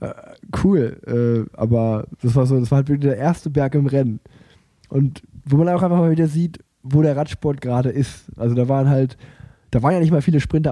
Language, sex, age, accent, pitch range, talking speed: German, male, 10-29, German, 120-140 Hz, 220 wpm